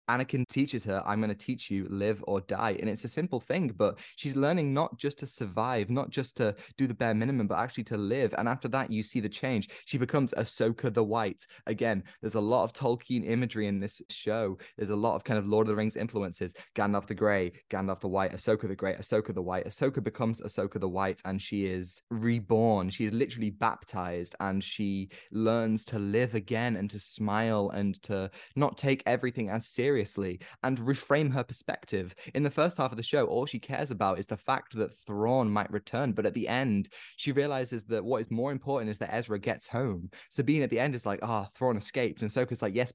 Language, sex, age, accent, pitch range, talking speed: English, male, 20-39, British, 100-125 Hz, 225 wpm